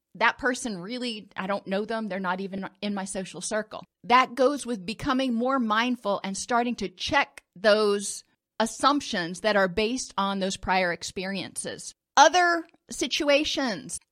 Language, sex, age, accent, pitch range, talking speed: English, female, 40-59, American, 200-250 Hz, 150 wpm